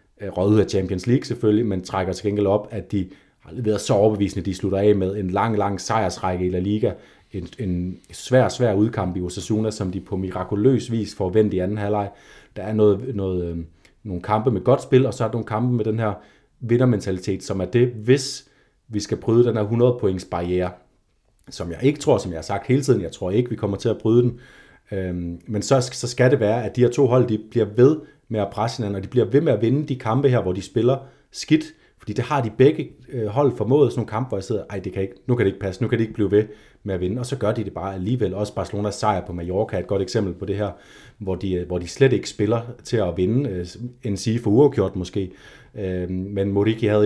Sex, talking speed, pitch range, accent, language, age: male, 245 wpm, 95-120 Hz, native, Danish, 30-49